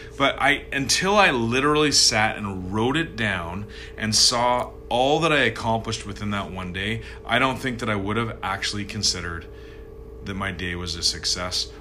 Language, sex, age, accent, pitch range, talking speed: English, male, 30-49, American, 100-125 Hz, 180 wpm